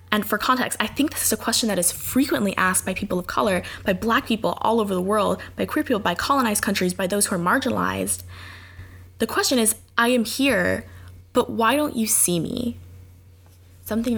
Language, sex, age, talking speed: English, female, 10-29, 205 wpm